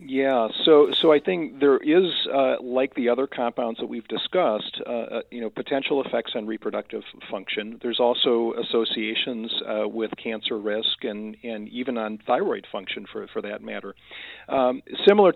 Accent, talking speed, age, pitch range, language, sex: American, 165 wpm, 50-69, 110-125 Hz, English, male